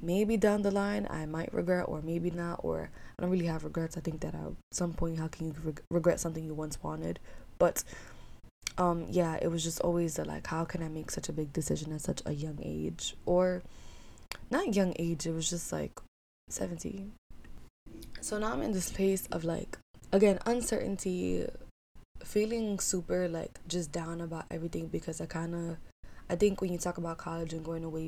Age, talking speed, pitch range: 20-39, 195 wpm, 160-185 Hz